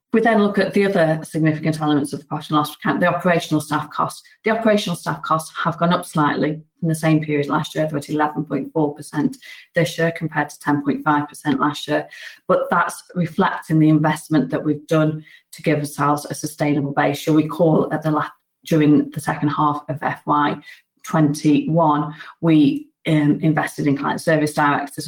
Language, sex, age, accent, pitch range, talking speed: English, female, 30-49, British, 145-165 Hz, 190 wpm